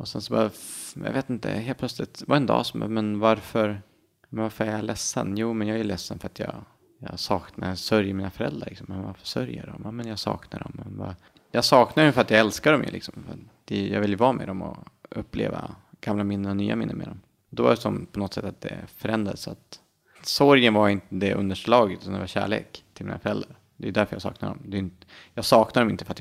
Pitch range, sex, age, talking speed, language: 95-110 Hz, male, 30-49, 245 wpm, Swedish